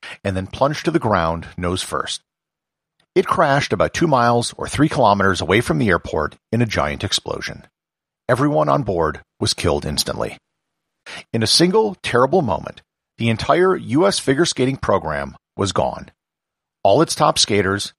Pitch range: 95-135 Hz